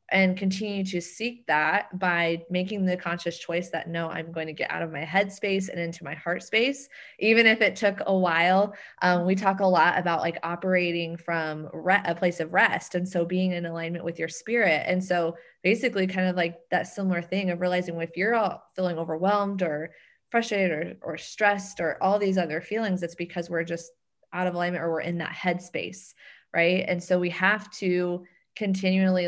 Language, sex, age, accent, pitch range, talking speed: English, female, 20-39, American, 170-190 Hz, 205 wpm